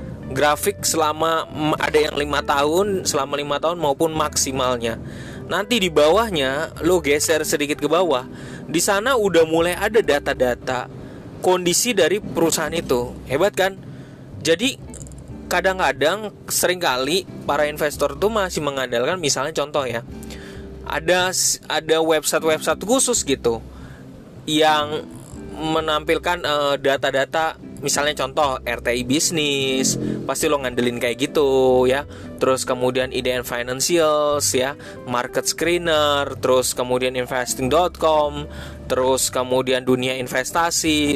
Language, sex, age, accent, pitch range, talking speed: Indonesian, male, 20-39, native, 130-165 Hz, 110 wpm